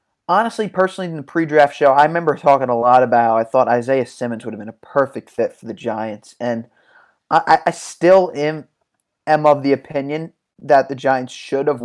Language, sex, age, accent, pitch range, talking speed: English, male, 20-39, American, 120-145 Hz, 205 wpm